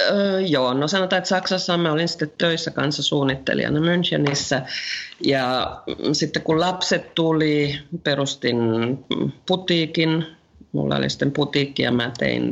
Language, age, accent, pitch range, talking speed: Finnish, 40-59, native, 130-170 Hz, 125 wpm